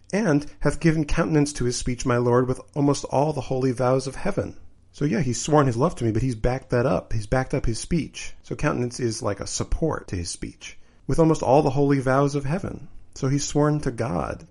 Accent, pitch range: American, 100-135 Hz